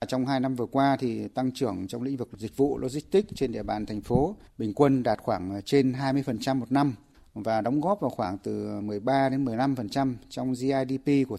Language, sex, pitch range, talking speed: Vietnamese, male, 110-135 Hz, 205 wpm